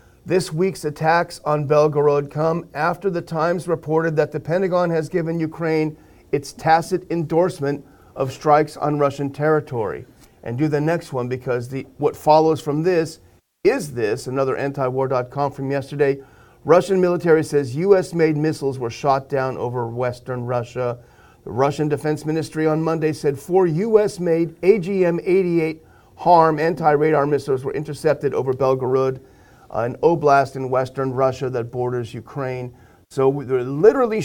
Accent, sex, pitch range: American, male, 130-170 Hz